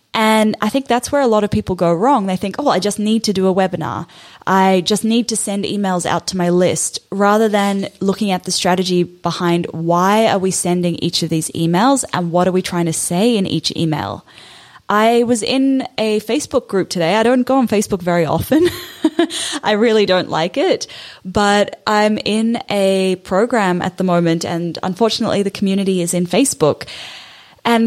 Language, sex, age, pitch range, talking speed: English, female, 10-29, 180-230 Hz, 195 wpm